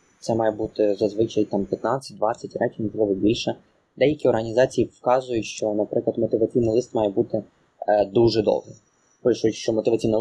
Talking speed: 135 wpm